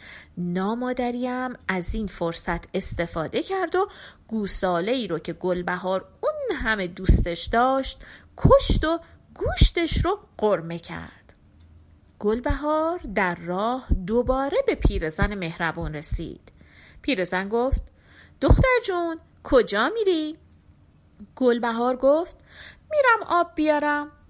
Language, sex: Persian, female